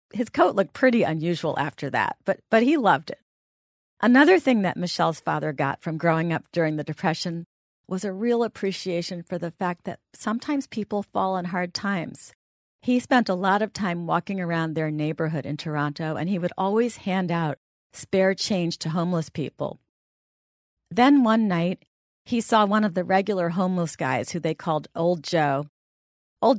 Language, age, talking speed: English, 40-59, 175 wpm